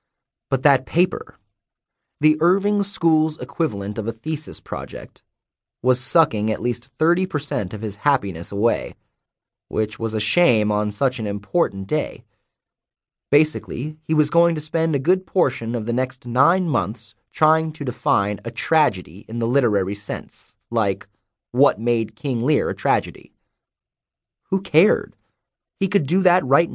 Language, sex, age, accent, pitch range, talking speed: English, male, 30-49, American, 110-150 Hz, 150 wpm